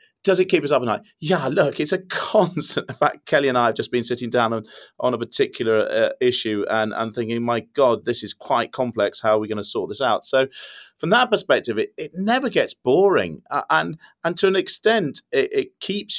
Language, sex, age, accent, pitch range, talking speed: English, male, 40-59, British, 110-175 Hz, 235 wpm